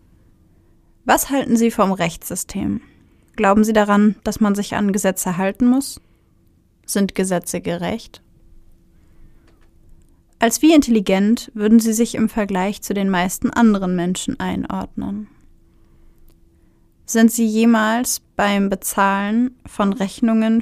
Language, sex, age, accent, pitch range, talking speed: German, female, 20-39, German, 180-235 Hz, 115 wpm